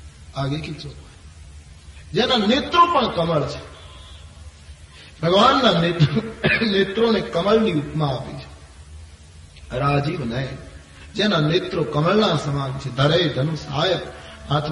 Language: Gujarati